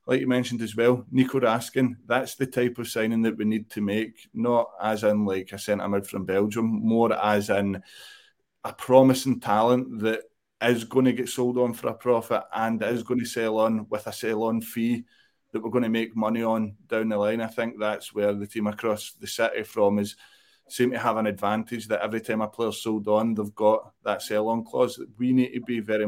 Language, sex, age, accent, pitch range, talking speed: English, male, 20-39, British, 110-125 Hz, 220 wpm